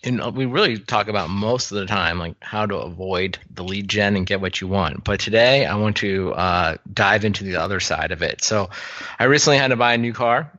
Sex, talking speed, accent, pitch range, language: male, 245 wpm, American, 95-115 Hz, English